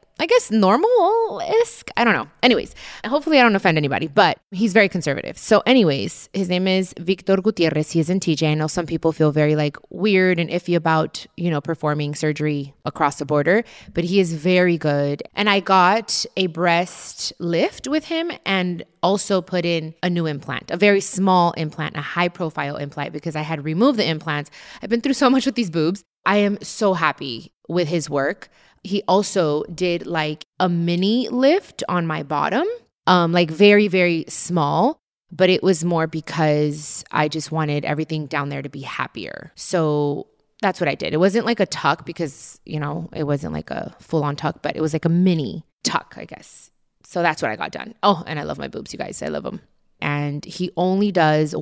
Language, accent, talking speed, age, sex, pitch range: English, American, 200 wpm, 20-39, female, 155-195 Hz